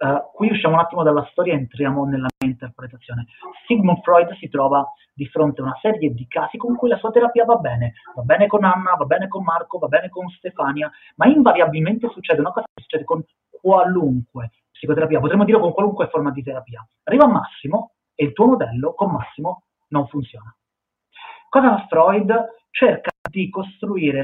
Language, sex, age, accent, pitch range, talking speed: Italian, male, 30-49, native, 140-200 Hz, 185 wpm